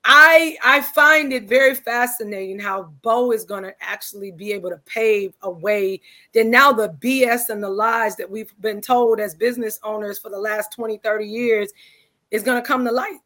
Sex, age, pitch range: female, 30-49, 210-265 Hz